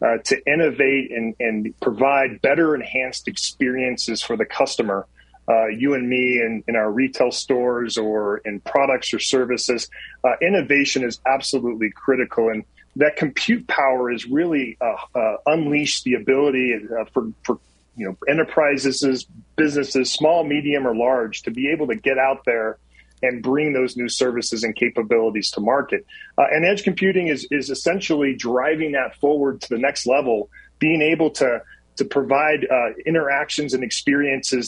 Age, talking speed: 30-49, 160 wpm